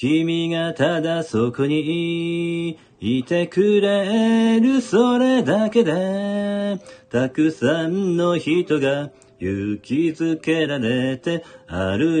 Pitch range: 130-195 Hz